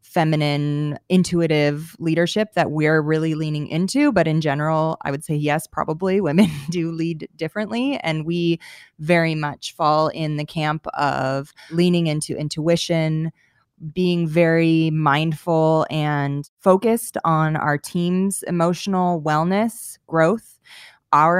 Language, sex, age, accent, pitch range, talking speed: English, female, 20-39, American, 150-175 Hz, 125 wpm